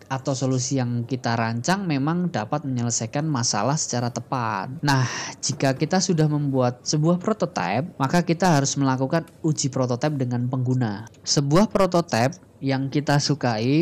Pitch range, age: 120-145 Hz, 20-39